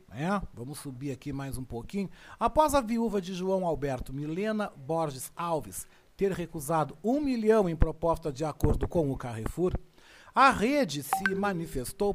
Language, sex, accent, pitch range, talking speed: Portuguese, male, Brazilian, 145-210 Hz, 150 wpm